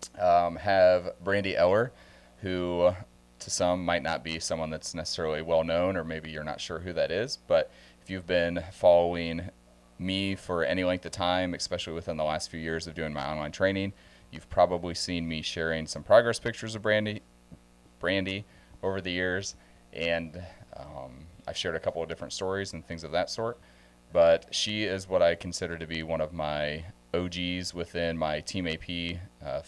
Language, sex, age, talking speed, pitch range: English, male, 30-49, 180 wpm, 75-90 Hz